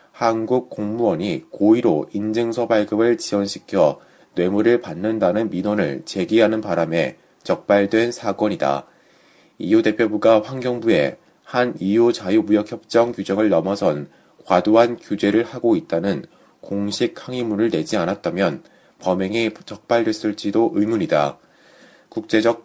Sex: male